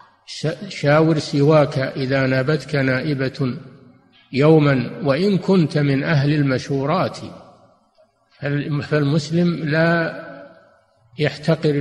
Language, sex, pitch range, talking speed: Arabic, male, 130-155 Hz, 70 wpm